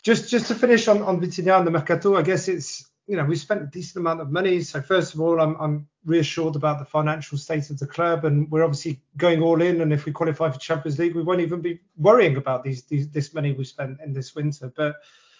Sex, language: male, English